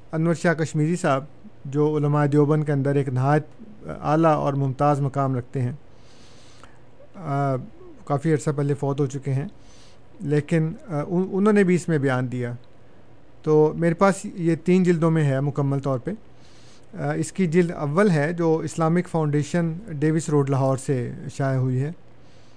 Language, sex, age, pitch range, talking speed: Urdu, male, 50-69, 135-165 Hz, 160 wpm